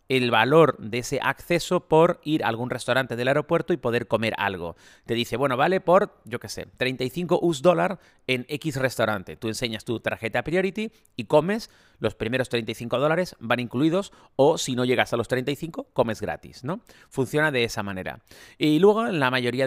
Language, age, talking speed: Spanish, 30-49, 190 wpm